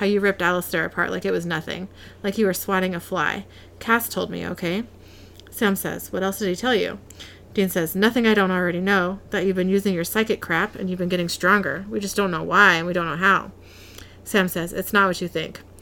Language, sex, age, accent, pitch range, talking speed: English, female, 30-49, American, 170-210 Hz, 240 wpm